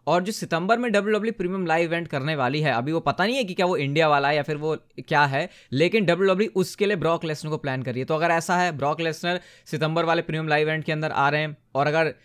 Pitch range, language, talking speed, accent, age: 145-185 Hz, Hindi, 280 wpm, native, 20-39